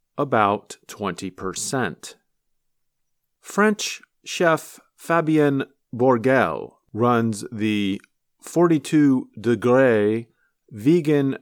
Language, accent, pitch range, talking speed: English, American, 115-155 Hz, 60 wpm